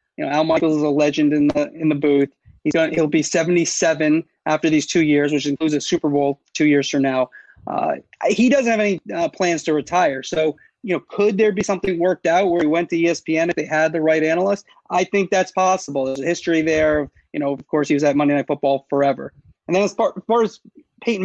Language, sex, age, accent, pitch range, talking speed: English, male, 30-49, American, 150-185 Hz, 250 wpm